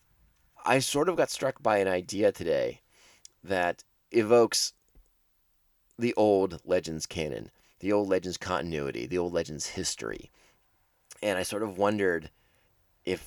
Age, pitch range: 30-49, 95-115 Hz